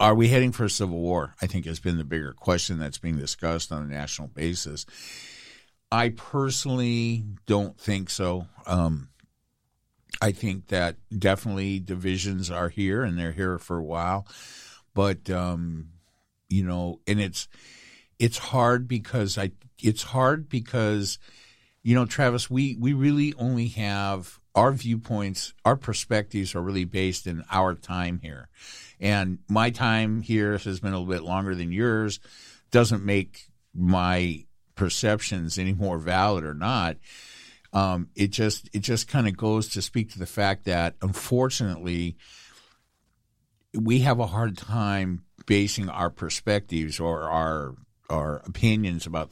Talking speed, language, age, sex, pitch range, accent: 145 wpm, English, 50-69, male, 85-110 Hz, American